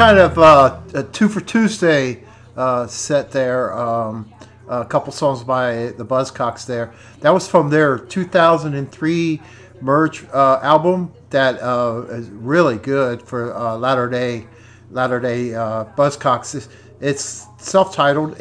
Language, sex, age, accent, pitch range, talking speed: English, male, 50-69, American, 115-145 Hz, 125 wpm